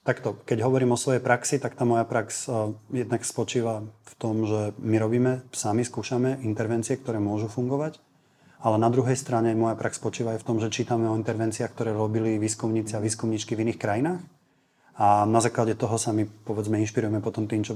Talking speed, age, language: 190 wpm, 30-49, Slovak